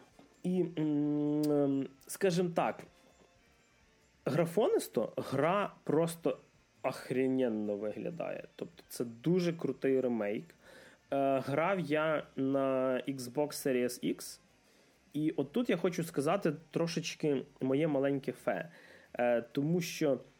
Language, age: Ukrainian, 20-39